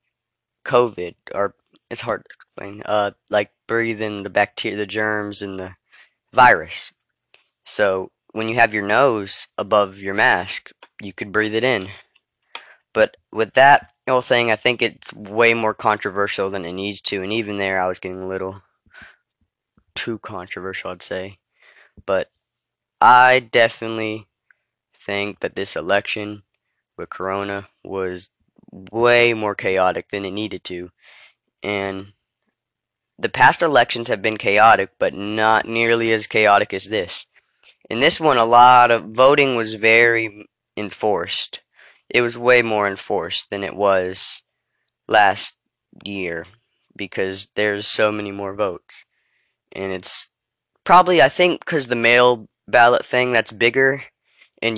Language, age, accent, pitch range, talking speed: English, 20-39, American, 100-115 Hz, 140 wpm